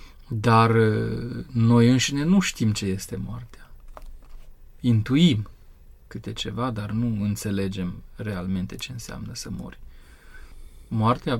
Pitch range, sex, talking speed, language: 100-125 Hz, male, 105 wpm, Romanian